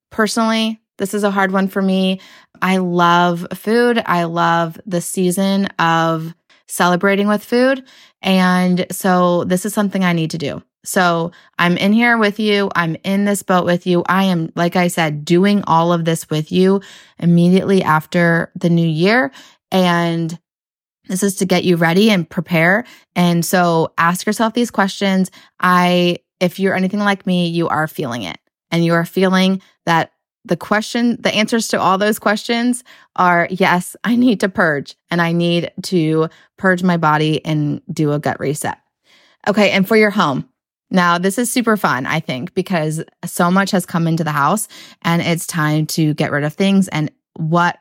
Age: 20-39